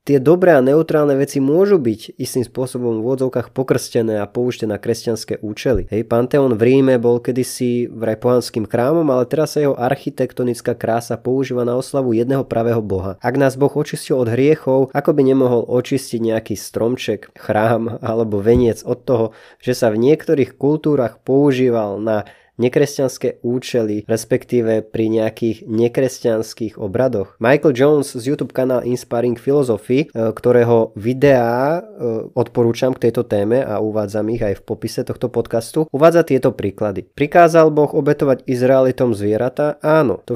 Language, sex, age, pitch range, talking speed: Slovak, male, 20-39, 115-145 Hz, 150 wpm